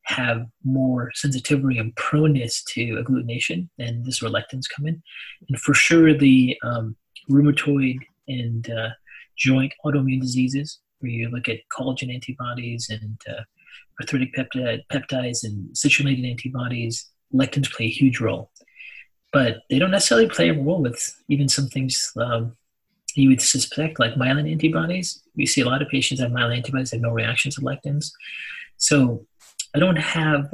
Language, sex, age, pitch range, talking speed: English, male, 30-49, 120-145 Hz, 160 wpm